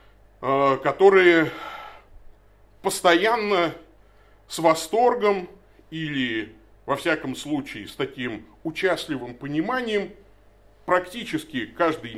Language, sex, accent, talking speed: Russian, male, native, 70 wpm